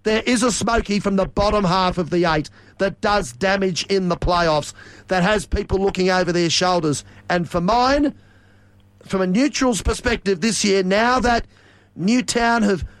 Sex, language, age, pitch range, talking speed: male, English, 40-59, 170-215 Hz, 170 wpm